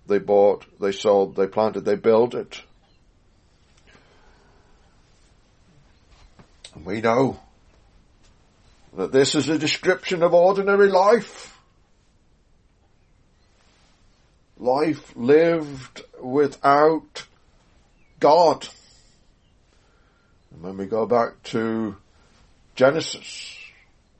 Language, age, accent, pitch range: English, 60-79, British, 100-150 Hz